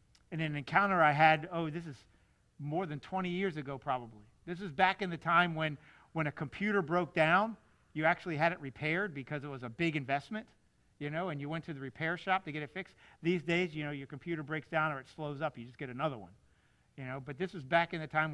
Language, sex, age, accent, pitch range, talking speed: English, male, 50-69, American, 155-195 Hz, 250 wpm